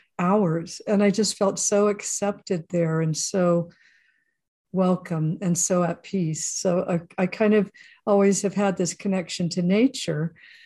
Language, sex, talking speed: English, female, 150 wpm